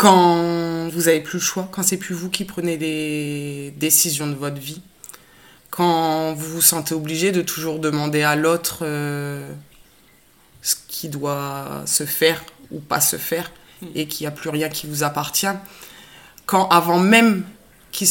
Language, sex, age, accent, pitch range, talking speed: French, female, 20-39, French, 150-170 Hz, 170 wpm